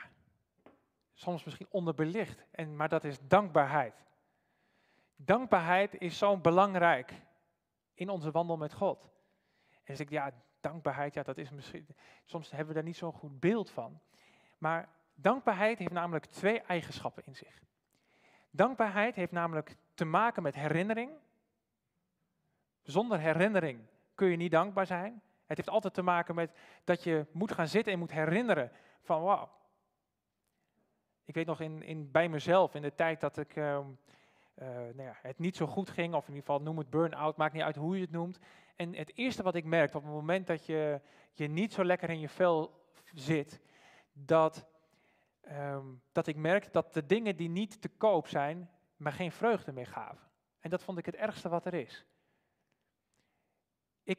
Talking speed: 165 wpm